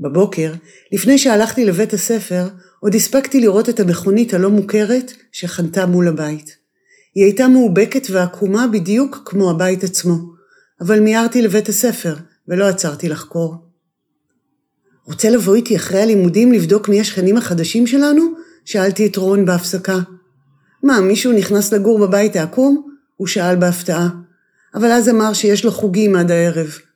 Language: Hebrew